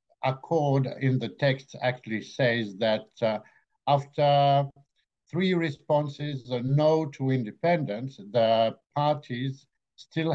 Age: 60-79